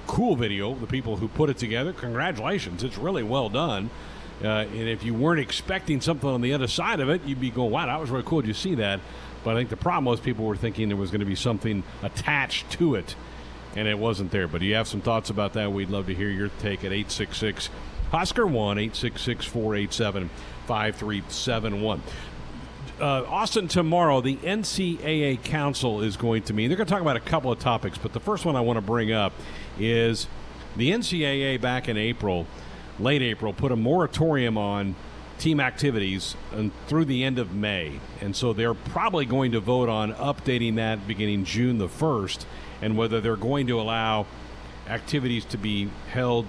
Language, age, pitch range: English, 50-69, 100-130 Hz